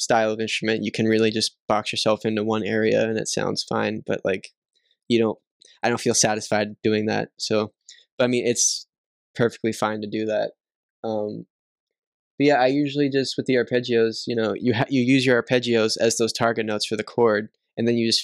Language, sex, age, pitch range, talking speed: English, male, 10-29, 110-120 Hz, 205 wpm